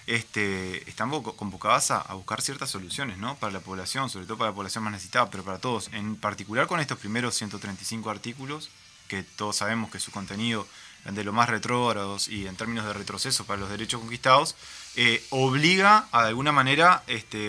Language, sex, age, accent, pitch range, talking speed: Spanish, male, 20-39, Argentinian, 110-130 Hz, 190 wpm